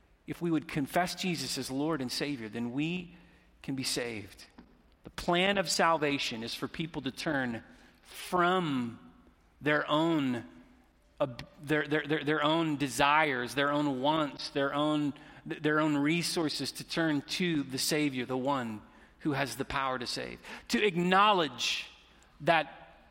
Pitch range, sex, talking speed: 135-180 Hz, male, 145 wpm